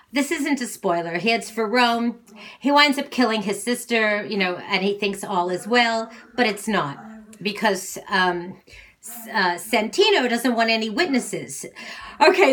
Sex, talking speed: female, 165 wpm